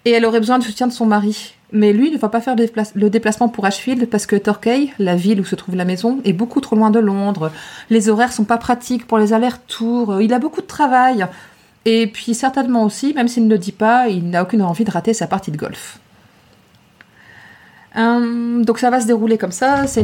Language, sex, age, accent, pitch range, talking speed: French, female, 30-49, French, 200-250 Hz, 230 wpm